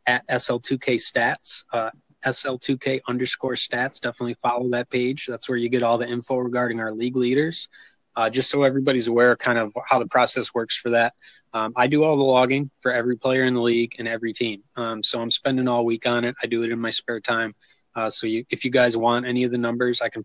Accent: American